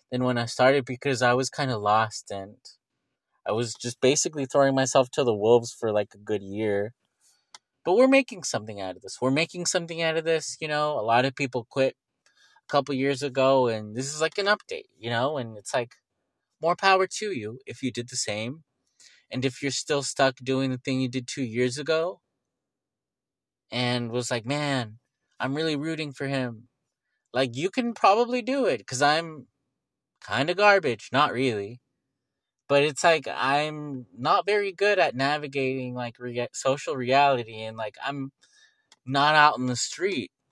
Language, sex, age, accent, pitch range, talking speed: English, male, 20-39, American, 125-150 Hz, 185 wpm